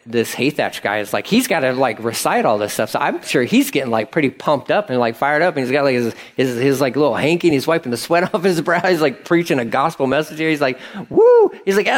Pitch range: 115-155 Hz